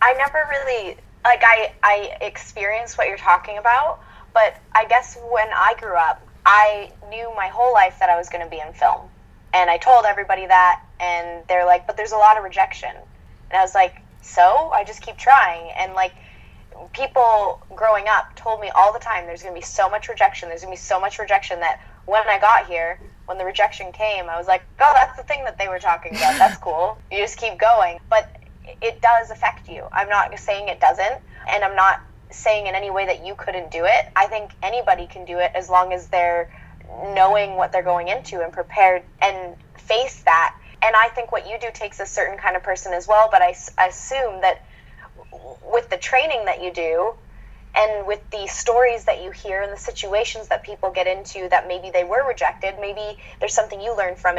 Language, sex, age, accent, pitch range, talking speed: English, female, 20-39, American, 180-220 Hz, 220 wpm